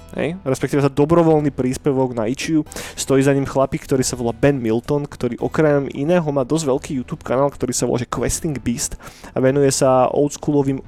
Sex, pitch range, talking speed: male, 125-145 Hz, 180 wpm